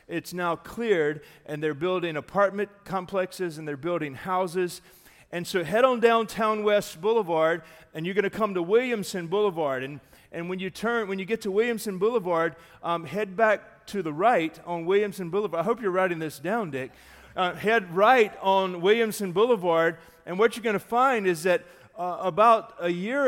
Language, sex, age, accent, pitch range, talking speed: English, male, 40-59, American, 165-210 Hz, 185 wpm